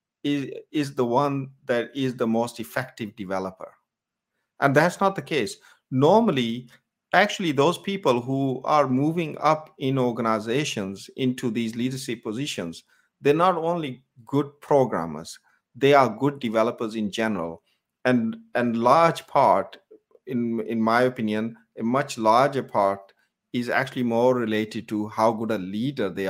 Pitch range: 115-150 Hz